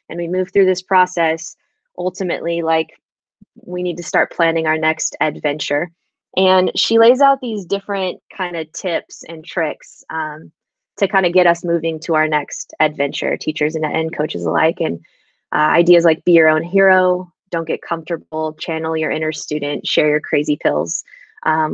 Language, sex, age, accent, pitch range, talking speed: English, female, 20-39, American, 165-200 Hz, 170 wpm